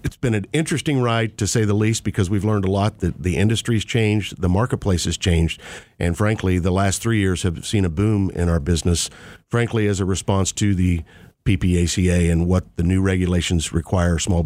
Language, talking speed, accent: English, 205 wpm, American